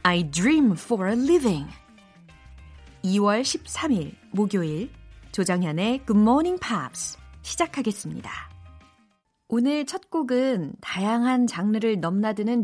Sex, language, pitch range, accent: female, Korean, 175-245 Hz, native